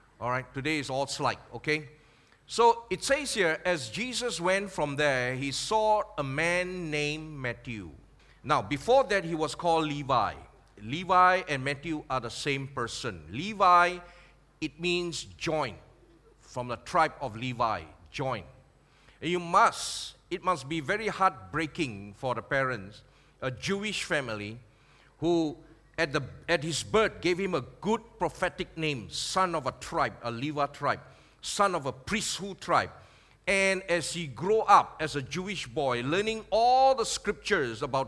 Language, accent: English, Malaysian